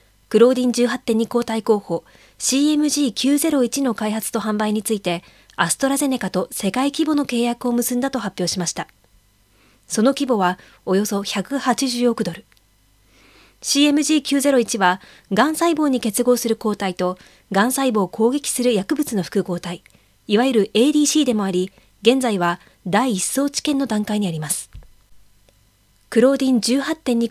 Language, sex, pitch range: English, female, 180-255 Hz